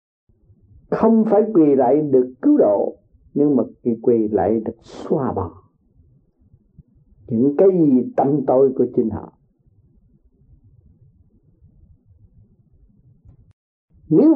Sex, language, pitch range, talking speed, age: male, Vietnamese, 125-215 Hz, 95 wpm, 50-69